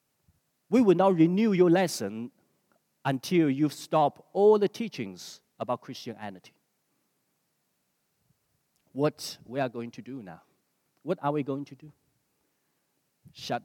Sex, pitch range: male, 130-195 Hz